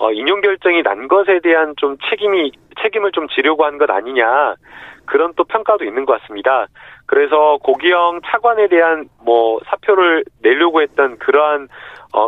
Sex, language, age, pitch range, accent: male, Korean, 40-59, 155-235 Hz, native